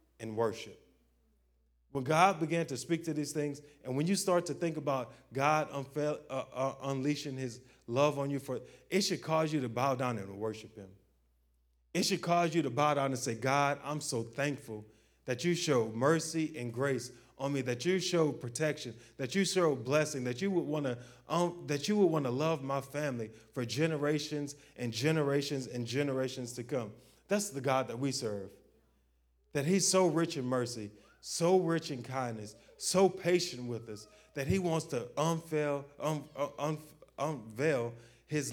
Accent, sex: American, male